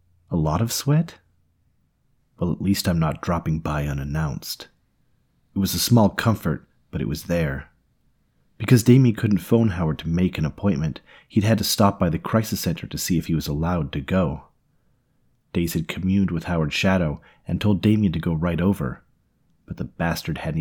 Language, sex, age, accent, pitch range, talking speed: English, male, 30-49, American, 80-110 Hz, 185 wpm